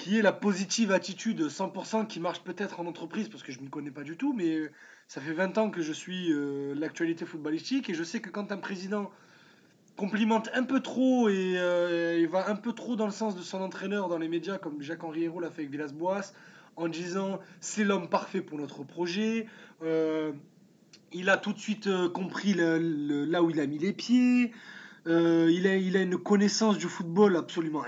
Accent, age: French, 20-39